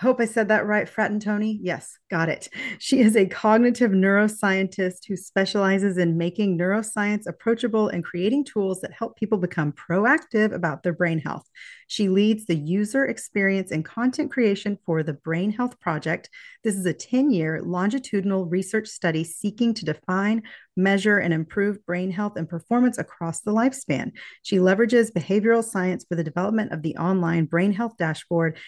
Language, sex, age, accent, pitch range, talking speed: English, female, 40-59, American, 170-230 Hz, 170 wpm